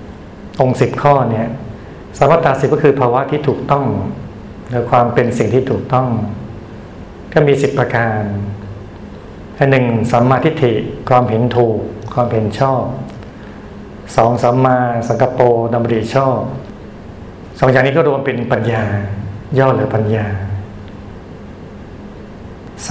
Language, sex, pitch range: Thai, male, 110-130 Hz